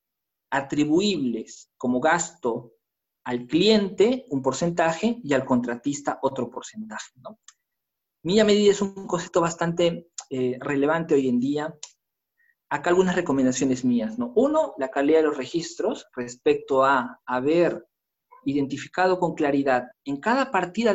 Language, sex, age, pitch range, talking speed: Spanish, male, 40-59, 135-185 Hz, 125 wpm